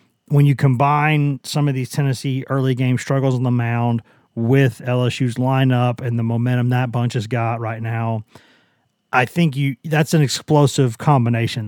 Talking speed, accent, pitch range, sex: 165 wpm, American, 120-145 Hz, male